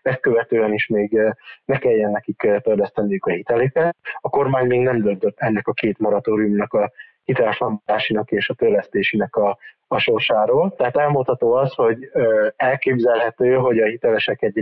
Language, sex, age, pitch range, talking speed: Hungarian, male, 20-39, 110-135 Hz, 140 wpm